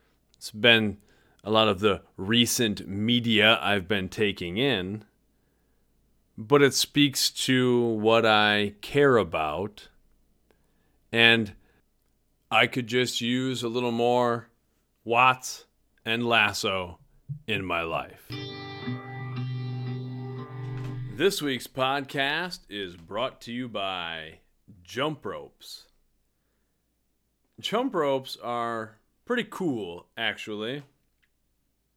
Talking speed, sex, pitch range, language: 95 wpm, male, 105-130 Hz, English